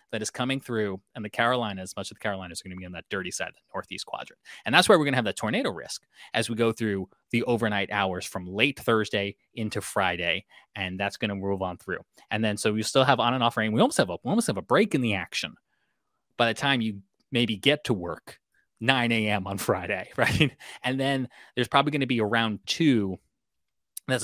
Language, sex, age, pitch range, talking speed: English, male, 20-39, 100-125 Hz, 240 wpm